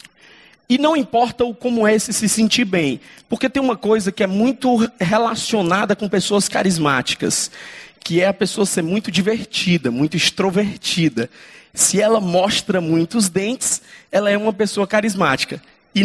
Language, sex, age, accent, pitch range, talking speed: Portuguese, male, 20-39, Brazilian, 185-230 Hz, 155 wpm